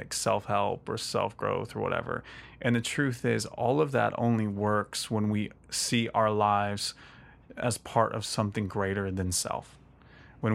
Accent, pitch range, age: American, 105-120 Hz, 30-49